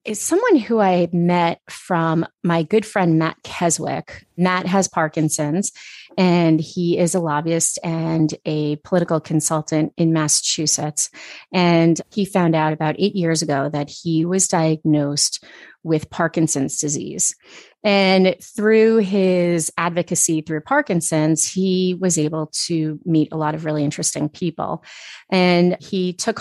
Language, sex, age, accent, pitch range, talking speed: English, female, 30-49, American, 160-190 Hz, 135 wpm